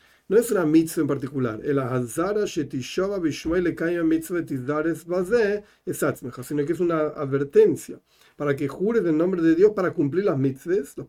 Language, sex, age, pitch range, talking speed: Spanish, male, 40-59, 140-205 Hz, 125 wpm